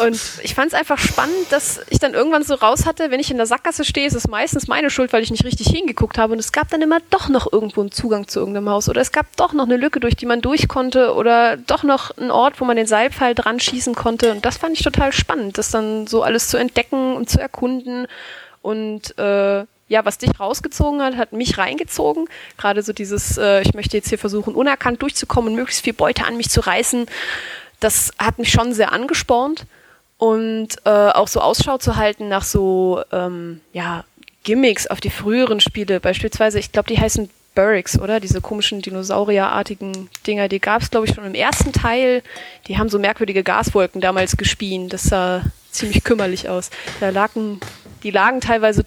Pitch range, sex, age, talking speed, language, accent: 200-250 Hz, female, 20-39, 210 wpm, German, German